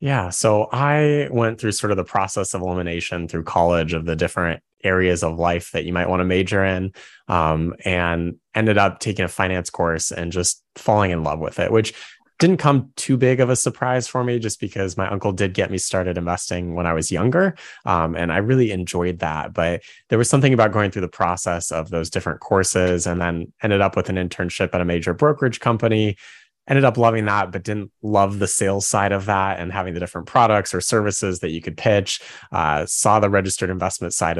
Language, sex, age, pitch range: English, male, 20-39, 85-105 Hz